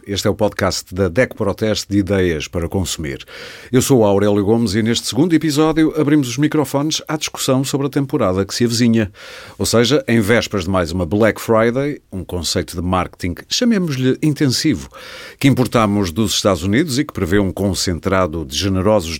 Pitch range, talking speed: 95-135 Hz, 180 wpm